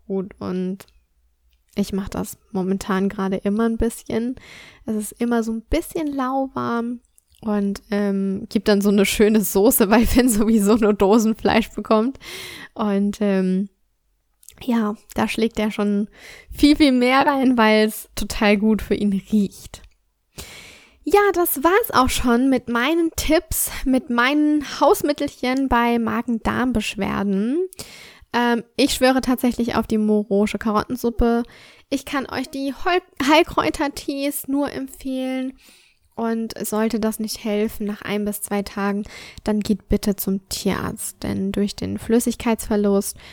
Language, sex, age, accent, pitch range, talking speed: German, female, 10-29, German, 205-250 Hz, 130 wpm